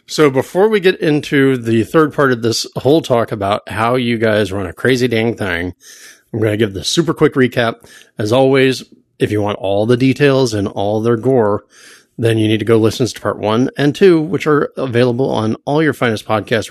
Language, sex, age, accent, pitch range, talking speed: English, male, 30-49, American, 105-145 Hz, 215 wpm